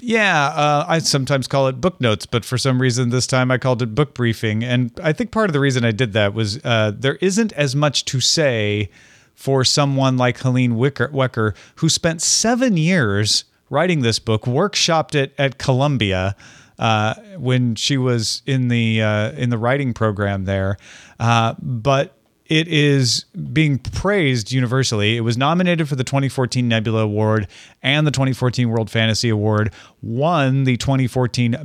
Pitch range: 115-145 Hz